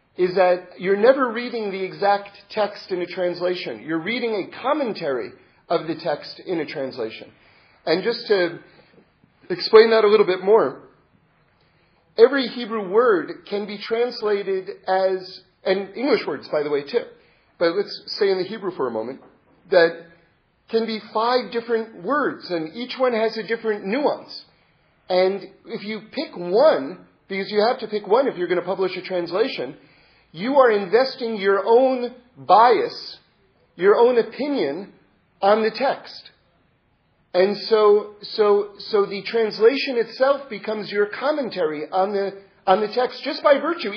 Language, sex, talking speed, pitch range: English, male, 155 wpm, 200-275 Hz